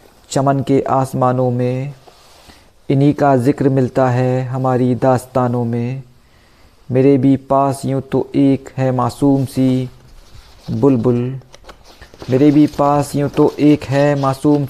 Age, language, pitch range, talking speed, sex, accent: 50-69, Hindi, 125-140 Hz, 125 wpm, male, native